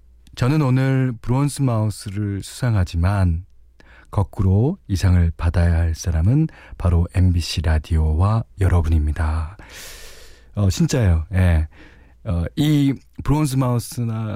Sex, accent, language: male, native, Korean